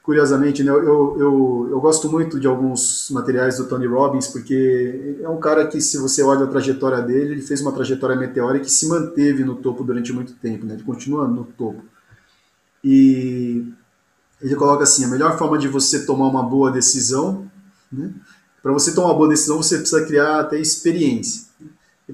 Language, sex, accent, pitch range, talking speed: Portuguese, male, Brazilian, 130-160 Hz, 185 wpm